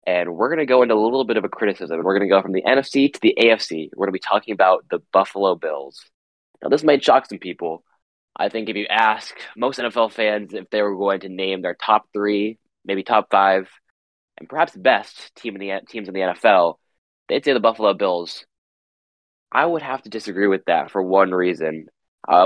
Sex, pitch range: male, 90-110 Hz